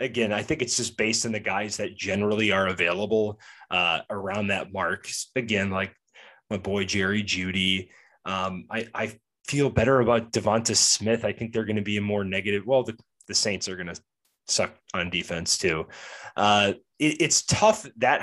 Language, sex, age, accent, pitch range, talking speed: English, male, 20-39, American, 100-120 Hz, 180 wpm